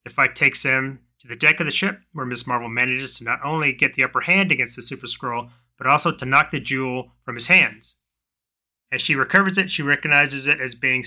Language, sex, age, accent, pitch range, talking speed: English, male, 30-49, American, 120-145 Hz, 235 wpm